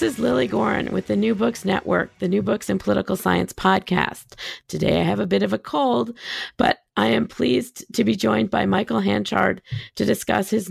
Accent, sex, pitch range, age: American, female, 100-125 Hz, 40-59